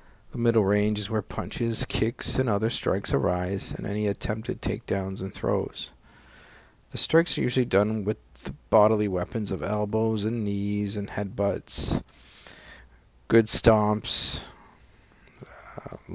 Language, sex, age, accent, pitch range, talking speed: English, male, 50-69, American, 95-115 Hz, 125 wpm